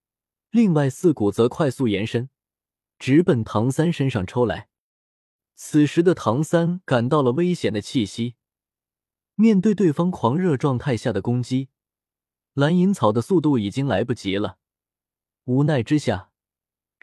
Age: 20-39